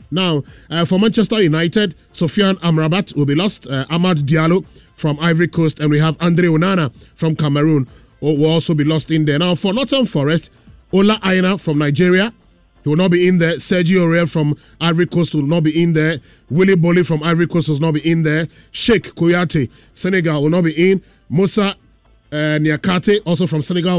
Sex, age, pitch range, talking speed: male, 30-49, 150-180 Hz, 190 wpm